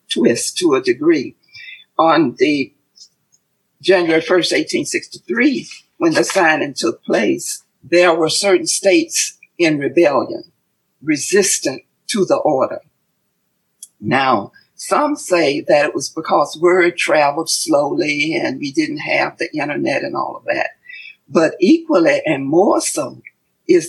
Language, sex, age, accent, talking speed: English, female, 60-79, American, 125 wpm